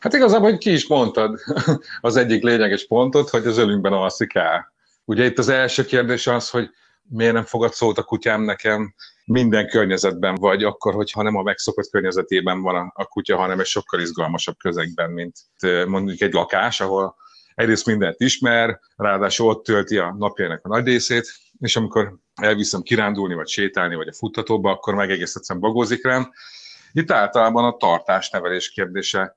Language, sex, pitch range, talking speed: Hungarian, male, 100-125 Hz, 165 wpm